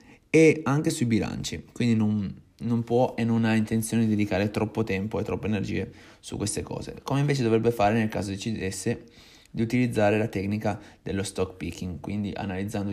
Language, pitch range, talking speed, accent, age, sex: Italian, 105-120 Hz, 175 wpm, native, 20-39, male